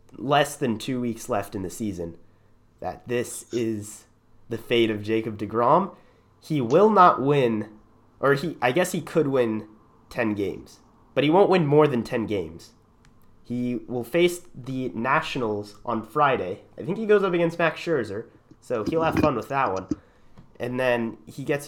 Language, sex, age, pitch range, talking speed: English, male, 30-49, 105-130 Hz, 175 wpm